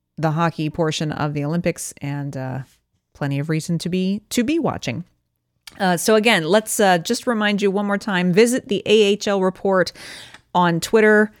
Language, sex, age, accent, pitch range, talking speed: English, female, 30-49, American, 160-205 Hz, 175 wpm